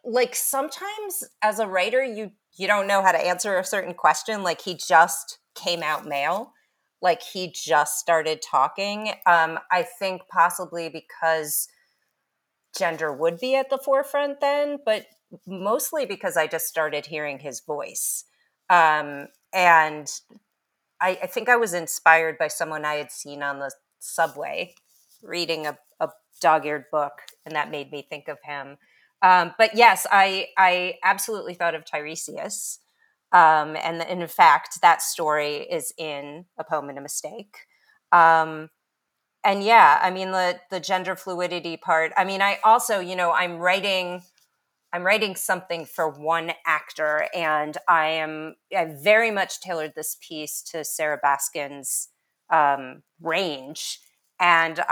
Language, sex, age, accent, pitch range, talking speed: English, female, 30-49, American, 155-200 Hz, 150 wpm